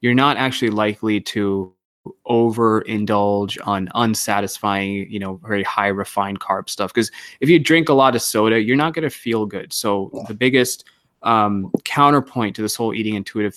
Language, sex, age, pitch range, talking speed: English, male, 20-39, 100-115 Hz, 175 wpm